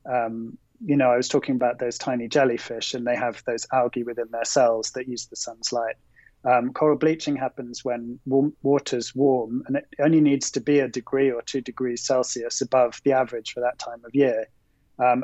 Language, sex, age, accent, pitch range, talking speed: English, male, 20-39, British, 120-140 Hz, 200 wpm